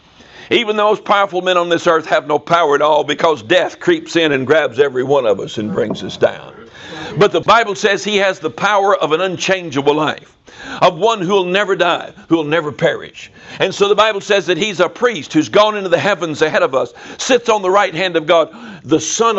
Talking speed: 230 wpm